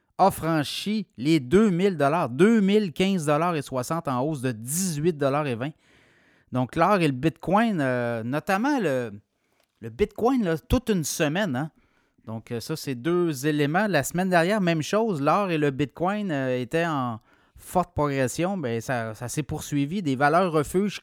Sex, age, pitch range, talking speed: male, 30-49, 130-170 Hz, 155 wpm